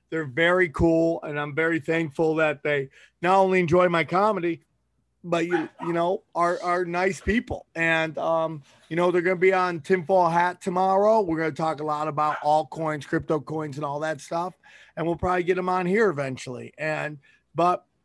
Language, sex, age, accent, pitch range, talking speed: English, male, 30-49, American, 165-195 Hz, 195 wpm